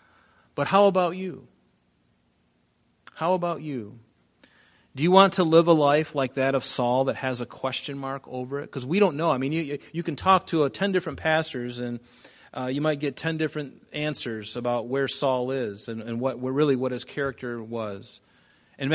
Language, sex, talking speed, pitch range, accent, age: English, male, 195 wpm, 125-175 Hz, American, 30-49